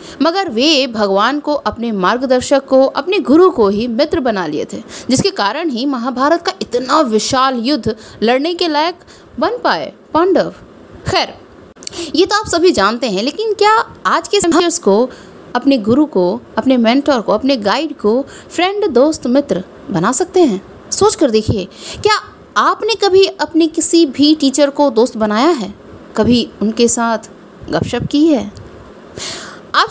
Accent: native